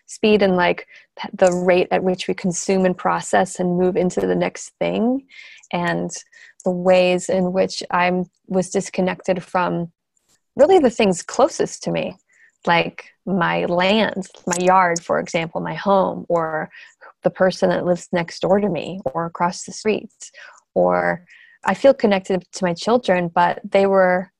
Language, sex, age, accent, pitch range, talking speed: English, female, 20-39, American, 170-195 Hz, 155 wpm